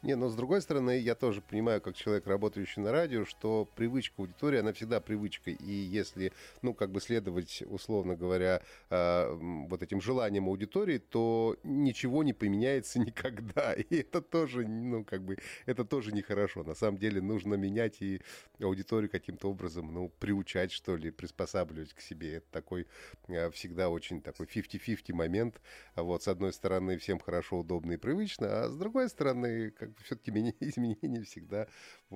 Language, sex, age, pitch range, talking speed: Russian, male, 30-49, 90-120 Hz, 160 wpm